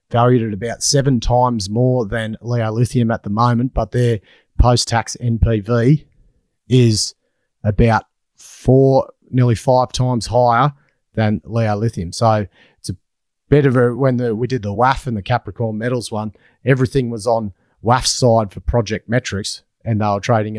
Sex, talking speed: male, 155 wpm